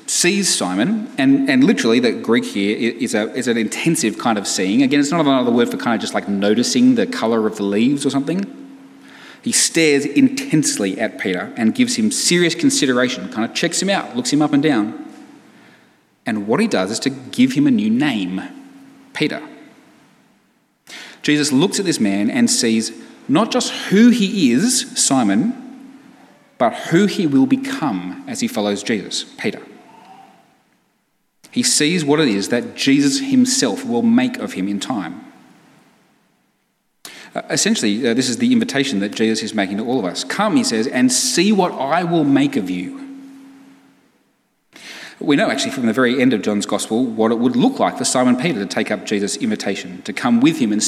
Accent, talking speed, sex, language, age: Australian, 185 wpm, male, English, 30-49